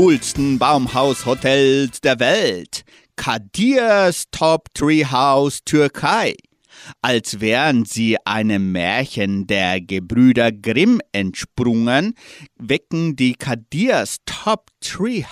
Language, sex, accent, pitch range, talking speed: German, male, German, 115-165 Hz, 80 wpm